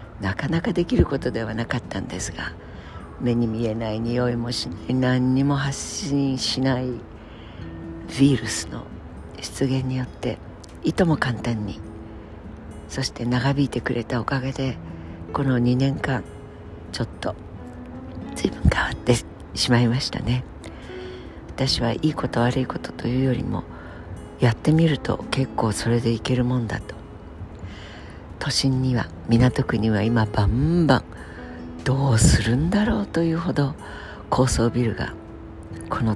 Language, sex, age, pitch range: Japanese, female, 50-69, 95-130 Hz